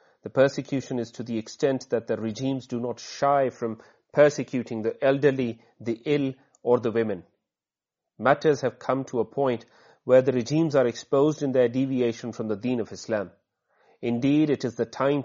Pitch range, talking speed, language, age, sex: 115-145 Hz, 175 wpm, Urdu, 30-49, male